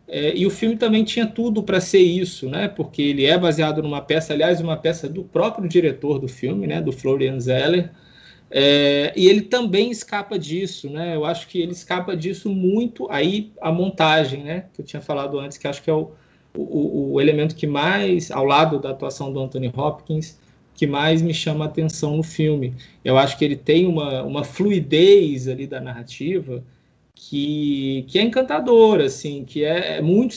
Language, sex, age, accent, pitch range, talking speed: Portuguese, male, 20-39, Brazilian, 150-195 Hz, 190 wpm